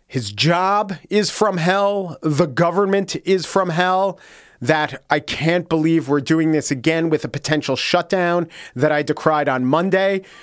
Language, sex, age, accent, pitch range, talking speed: English, male, 40-59, American, 135-185 Hz, 155 wpm